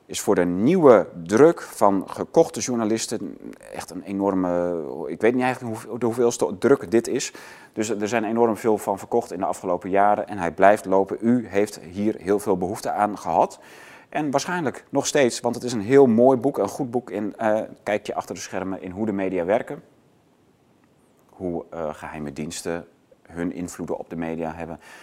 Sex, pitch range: male, 90-120 Hz